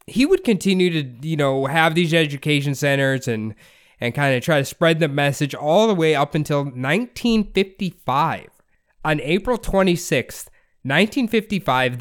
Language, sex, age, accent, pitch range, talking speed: English, male, 20-39, American, 135-175 Hz, 140 wpm